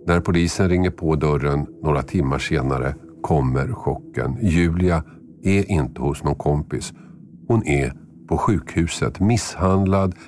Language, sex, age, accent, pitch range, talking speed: Swedish, male, 50-69, native, 75-90 Hz, 125 wpm